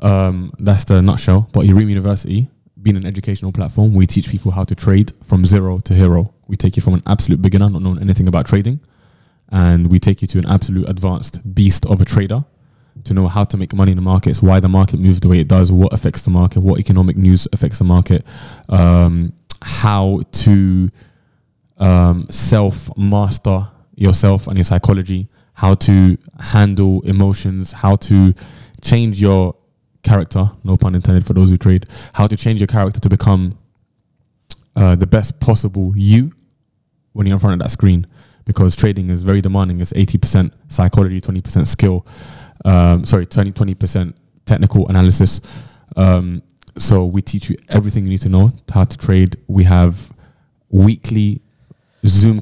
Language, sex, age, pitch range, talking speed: English, male, 10-29, 95-110 Hz, 170 wpm